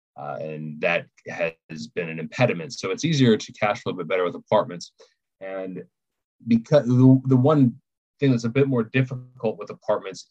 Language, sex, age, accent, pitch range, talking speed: English, male, 30-49, American, 90-135 Hz, 175 wpm